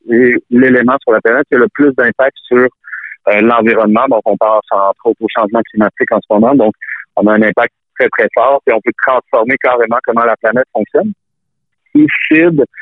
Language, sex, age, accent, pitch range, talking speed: French, male, 50-69, French, 110-130 Hz, 190 wpm